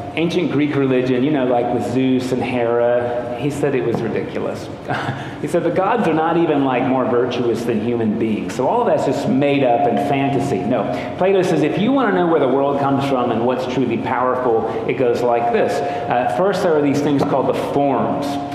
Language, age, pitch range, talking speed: English, 40-59, 120-150 Hz, 215 wpm